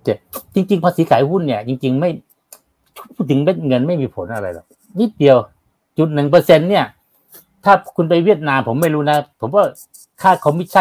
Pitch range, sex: 115-170 Hz, male